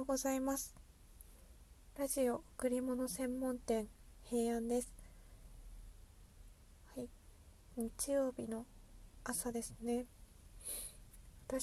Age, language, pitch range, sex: 20-39, Japanese, 220-250 Hz, female